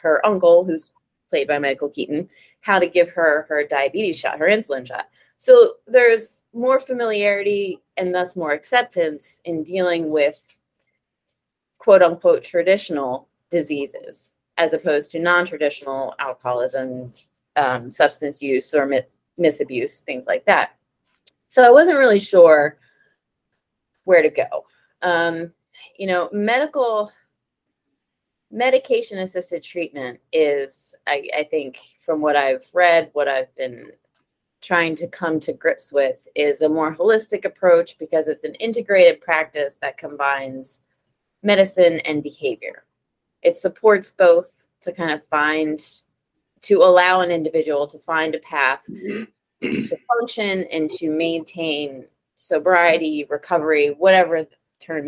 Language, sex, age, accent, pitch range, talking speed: English, female, 30-49, American, 150-210 Hz, 125 wpm